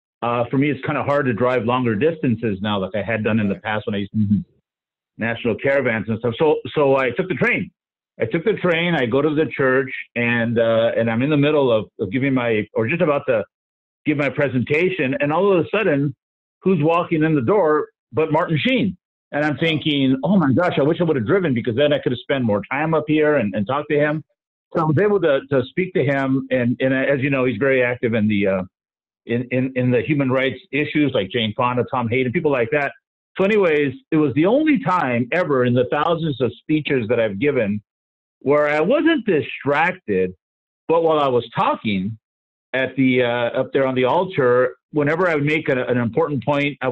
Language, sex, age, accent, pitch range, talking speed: English, male, 50-69, American, 120-155 Hz, 230 wpm